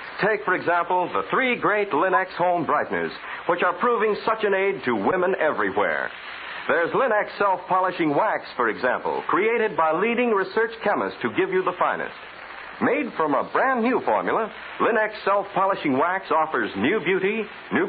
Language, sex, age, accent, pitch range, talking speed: English, male, 60-79, American, 180-230 Hz, 165 wpm